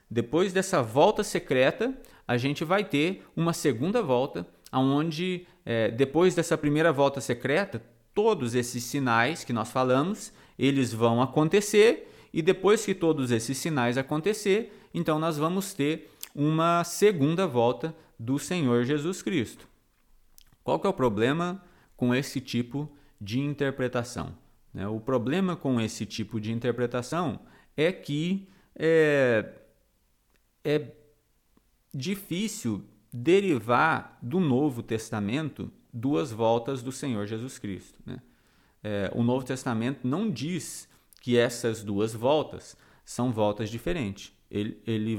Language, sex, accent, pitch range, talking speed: Portuguese, male, Brazilian, 120-165 Hz, 120 wpm